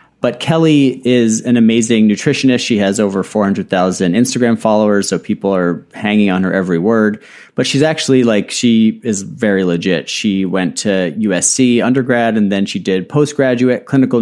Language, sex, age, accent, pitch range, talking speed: English, male, 30-49, American, 100-125 Hz, 165 wpm